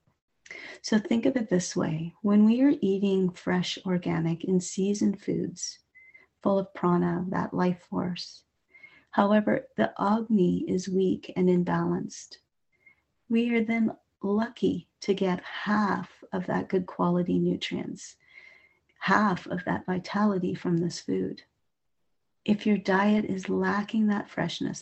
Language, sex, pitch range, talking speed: English, female, 175-210 Hz, 130 wpm